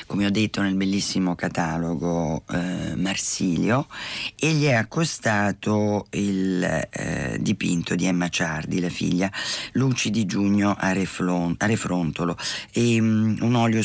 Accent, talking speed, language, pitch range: native, 120 wpm, Italian, 95-125 Hz